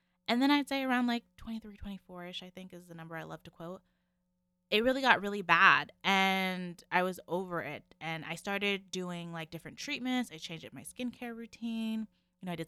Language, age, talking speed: English, 20-39, 210 wpm